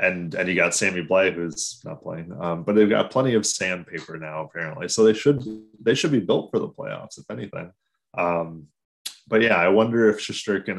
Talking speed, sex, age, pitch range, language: 205 wpm, male, 20-39, 90-110 Hz, English